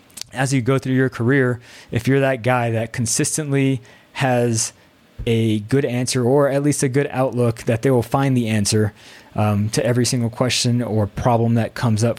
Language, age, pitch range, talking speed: English, 20-39, 115-135 Hz, 185 wpm